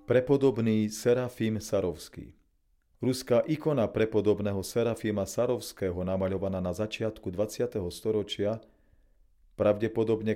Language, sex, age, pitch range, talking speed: Slovak, male, 40-59, 95-120 Hz, 80 wpm